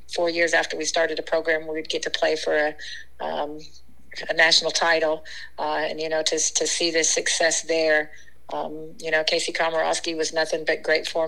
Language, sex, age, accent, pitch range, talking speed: English, female, 50-69, American, 155-170 Hz, 195 wpm